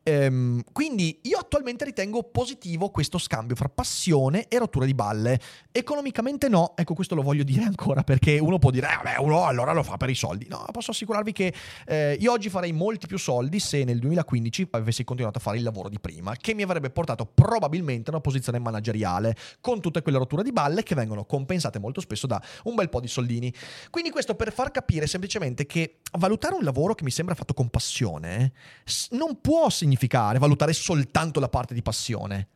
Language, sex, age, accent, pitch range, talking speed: Italian, male, 30-49, native, 120-180 Hz, 195 wpm